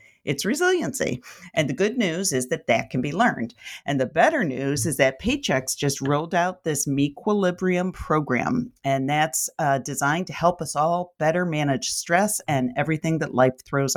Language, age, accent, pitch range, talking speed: English, 40-59, American, 135-170 Hz, 175 wpm